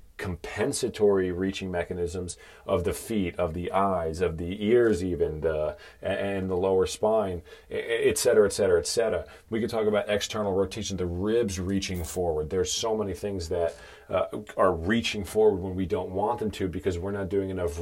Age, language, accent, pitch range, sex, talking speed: 40-59, English, American, 90-120 Hz, male, 180 wpm